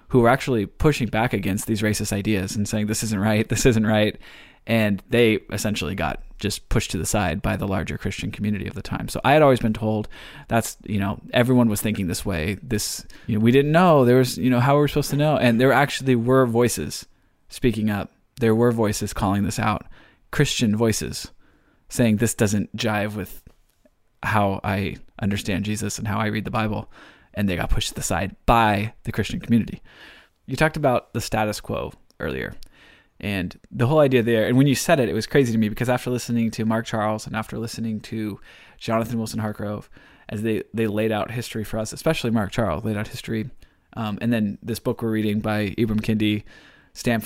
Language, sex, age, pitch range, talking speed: English, male, 20-39, 105-120 Hz, 205 wpm